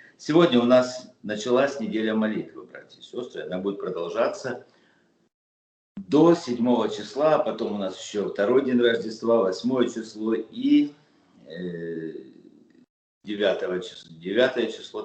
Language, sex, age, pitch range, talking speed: Russian, male, 50-69, 90-120 Hz, 120 wpm